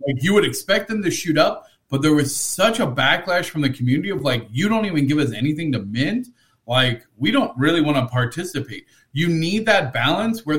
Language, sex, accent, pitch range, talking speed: English, male, American, 130-170 Hz, 220 wpm